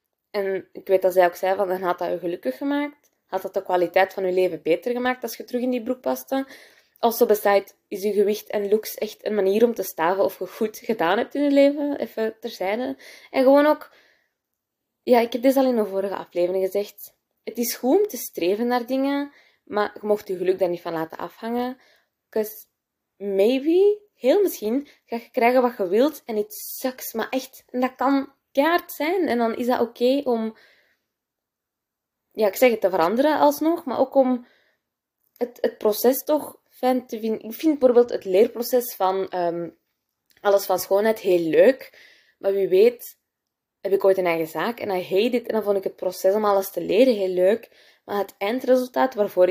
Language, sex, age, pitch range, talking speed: Dutch, female, 20-39, 195-255 Hz, 205 wpm